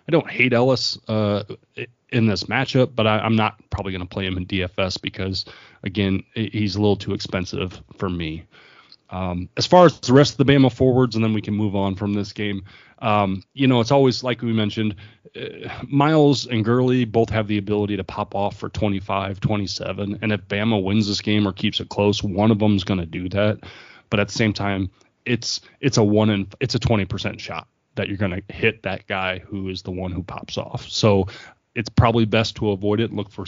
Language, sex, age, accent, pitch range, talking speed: English, male, 30-49, American, 100-115 Hz, 225 wpm